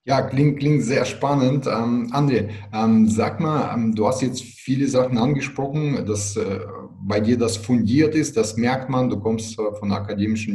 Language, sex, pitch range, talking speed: German, male, 105-125 Hz, 180 wpm